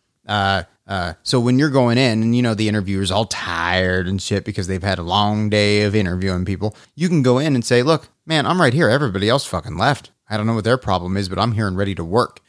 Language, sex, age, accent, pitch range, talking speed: English, male, 30-49, American, 100-130 Hz, 260 wpm